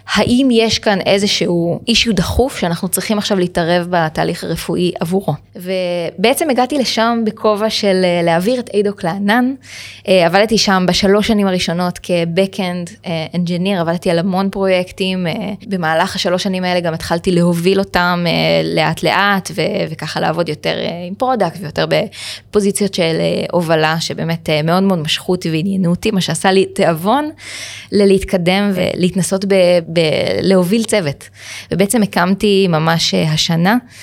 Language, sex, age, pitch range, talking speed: Hebrew, female, 20-39, 170-205 Hz, 125 wpm